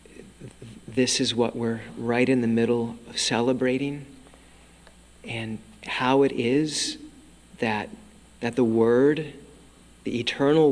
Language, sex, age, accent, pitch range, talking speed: English, male, 40-59, American, 110-130 Hz, 110 wpm